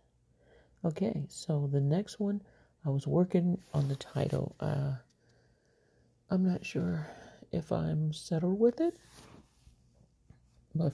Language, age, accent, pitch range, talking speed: English, 50-69, American, 135-175 Hz, 115 wpm